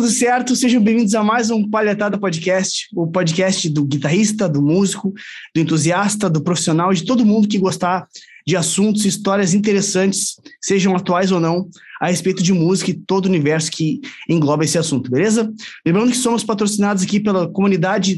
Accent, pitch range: Brazilian, 180-210 Hz